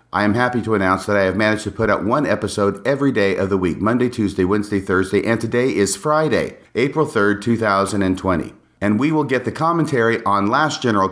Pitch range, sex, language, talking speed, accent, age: 95-125 Hz, male, English, 210 wpm, American, 40-59